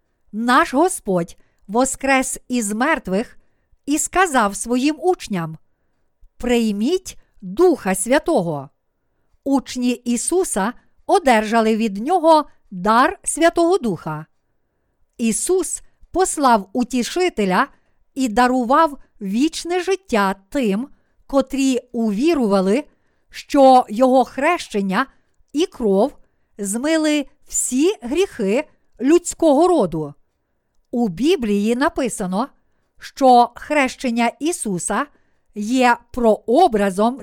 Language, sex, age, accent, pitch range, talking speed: Ukrainian, female, 50-69, native, 210-305 Hz, 75 wpm